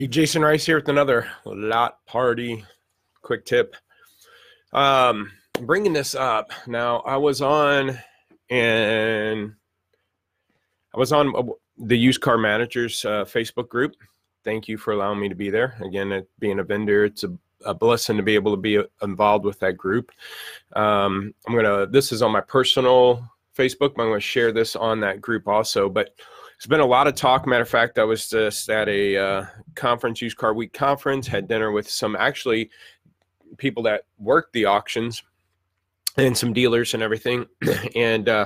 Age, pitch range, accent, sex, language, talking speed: 30-49, 105-125 Hz, American, male, English, 170 wpm